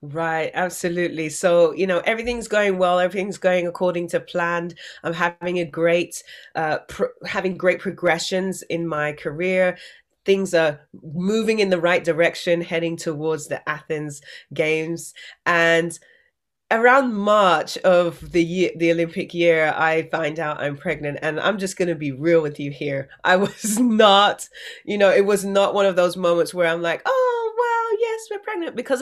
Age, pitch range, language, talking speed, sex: 30-49, 170-220 Hz, English, 160 wpm, female